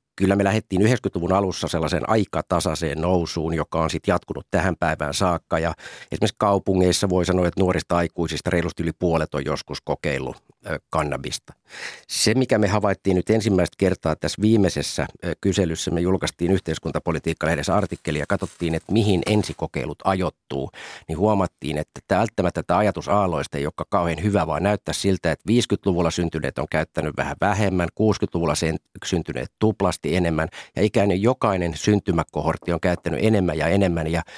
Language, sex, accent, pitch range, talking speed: Finnish, male, native, 80-100 Hz, 145 wpm